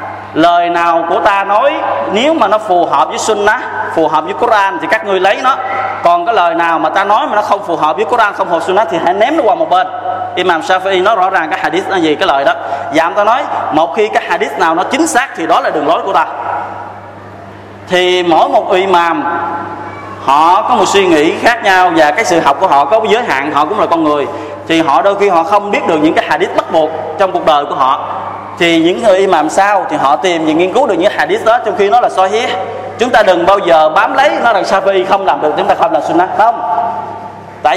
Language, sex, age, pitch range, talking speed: Vietnamese, male, 20-39, 160-210 Hz, 255 wpm